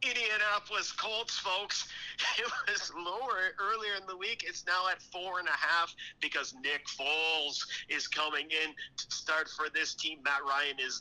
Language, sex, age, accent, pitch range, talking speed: English, male, 40-59, American, 150-215 Hz, 170 wpm